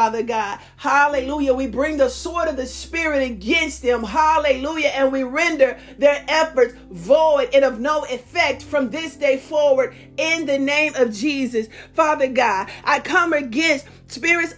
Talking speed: 155 wpm